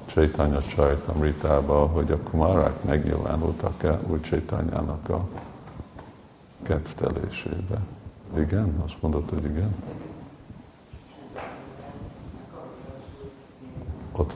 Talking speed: 70 wpm